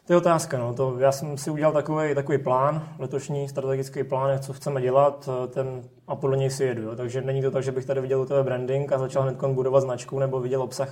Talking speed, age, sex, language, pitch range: 240 wpm, 20-39, male, Czech, 120-135 Hz